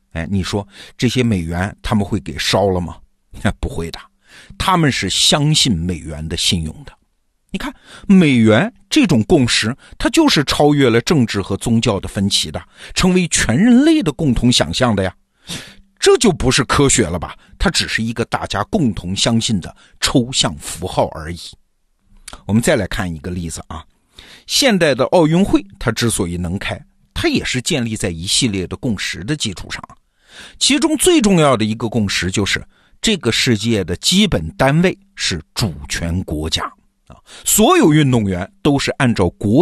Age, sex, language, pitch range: 50-69, male, Chinese, 95-150 Hz